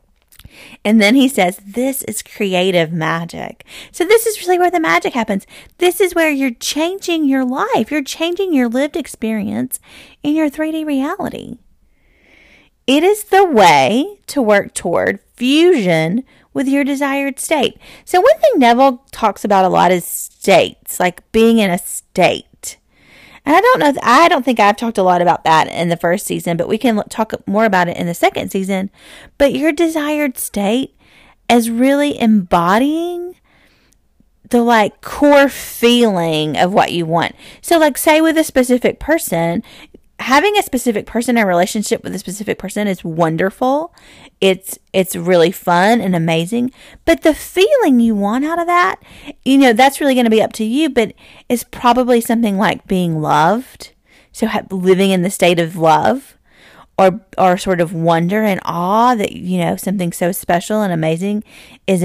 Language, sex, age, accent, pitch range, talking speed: English, female, 30-49, American, 190-290 Hz, 170 wpm